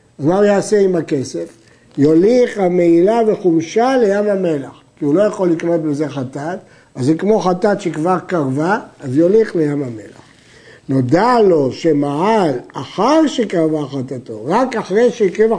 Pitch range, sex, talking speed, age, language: 155-220 Hz, male, 135 wpm, 60-79, Hebrew